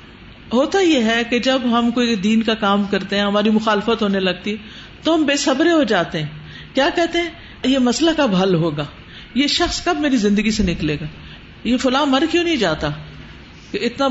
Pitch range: 165-265 Hz